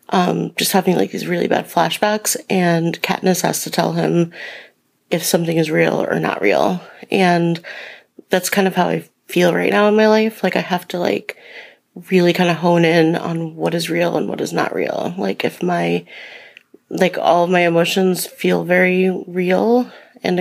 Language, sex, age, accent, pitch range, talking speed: English, female, 30-49, American, 170-195 Hz, 190 wpm